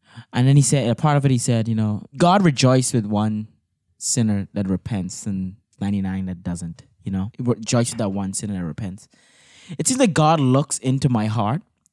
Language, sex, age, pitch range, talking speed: English, male, 20-39, 110-155 Hz, 205 wpm